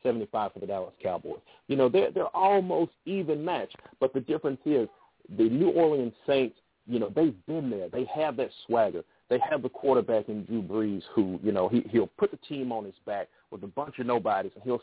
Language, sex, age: English, male, 40-59